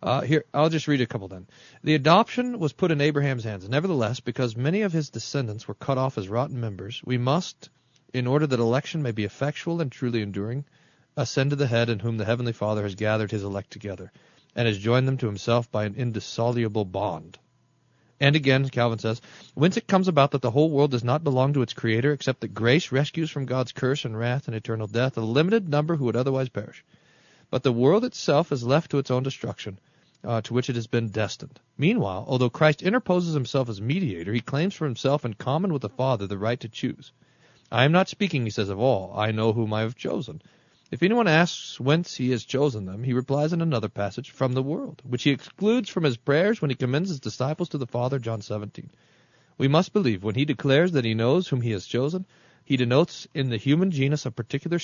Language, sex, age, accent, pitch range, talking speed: English, male, 40-59, American, 115-150 Hz, 225 wpm